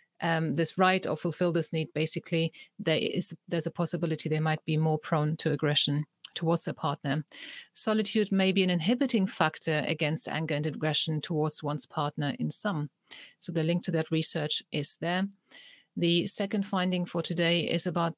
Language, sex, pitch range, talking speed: English, female, 160-190 Hz, 170 wpm